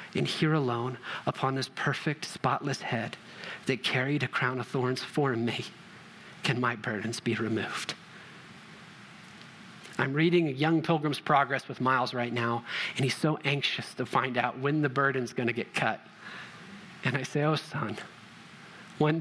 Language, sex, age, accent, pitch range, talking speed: English, male, 40-59, American, 125-165 Hz, 160 wpm